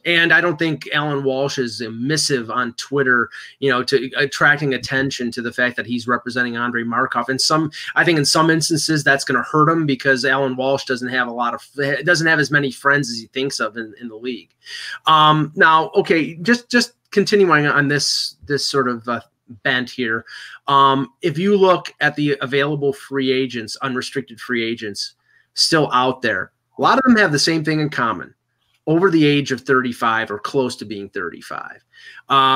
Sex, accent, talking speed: male, American, 195 wpm